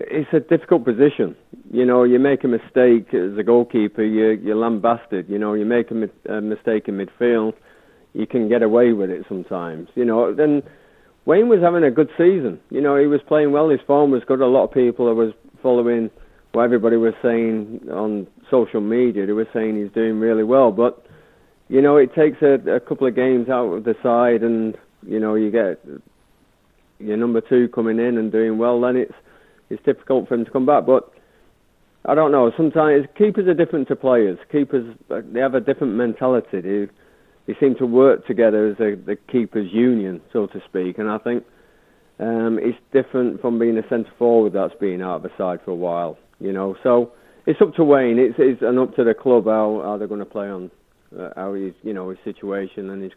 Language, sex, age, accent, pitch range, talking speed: English, male, 30-49, British, 110-130 Hz, 210 wpm